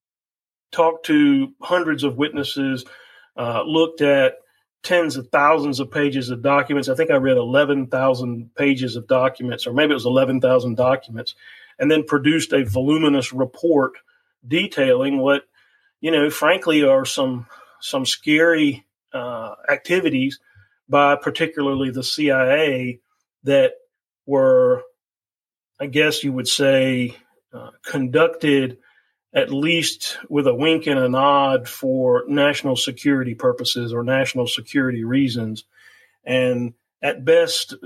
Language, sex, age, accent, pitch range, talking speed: English, male, 40-59, American, 130-155 Hz, 125 wpm